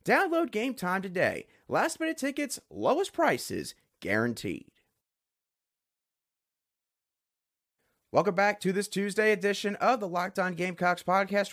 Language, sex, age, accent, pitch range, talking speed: English, male, 30-49, American, 150-210 Hz, 105 wpm